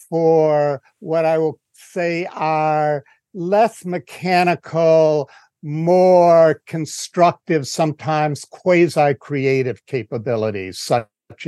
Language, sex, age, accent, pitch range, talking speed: English, male, 60-79, American, 135-175 Hz, 75 wpm